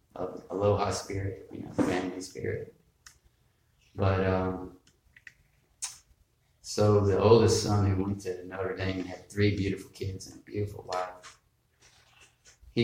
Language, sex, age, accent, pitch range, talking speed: English, male, 40-59, American, 90-110 Hz, 125 wpm